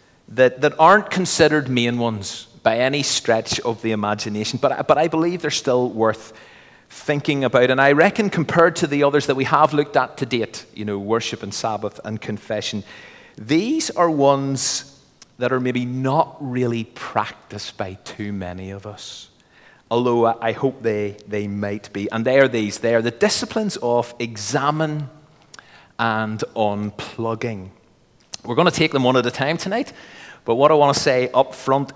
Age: 30-49